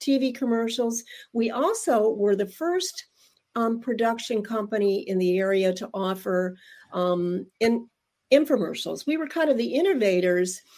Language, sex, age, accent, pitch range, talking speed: English, female, 50-69, American, 185-235 Hz, 130 wpm